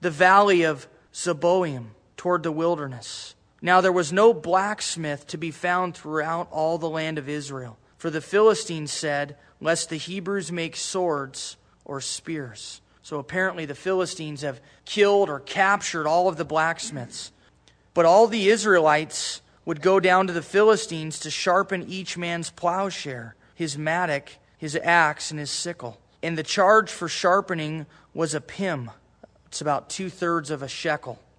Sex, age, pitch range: male, 30-49, 150-190 Hz